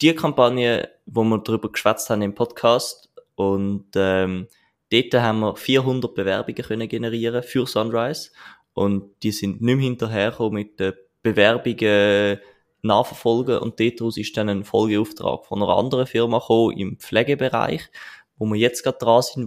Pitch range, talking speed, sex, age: 105-125 Hz, 150 wpm, male, 20-39